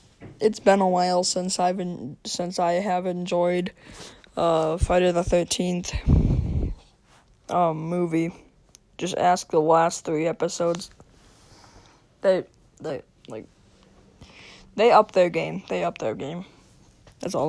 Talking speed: 125 wpm